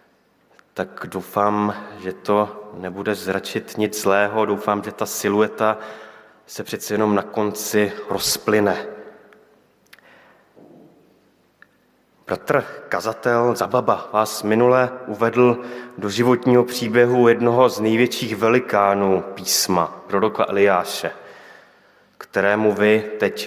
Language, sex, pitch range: Slovak, male, 105-120 Hz